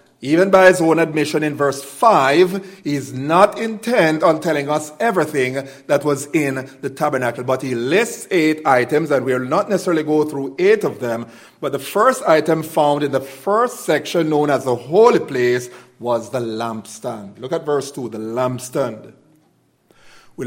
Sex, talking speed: male, 175 wpm